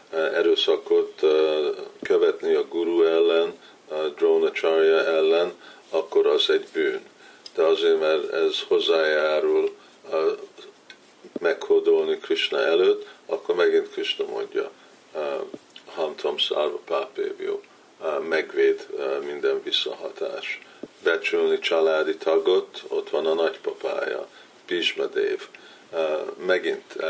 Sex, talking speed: male, 80 wpm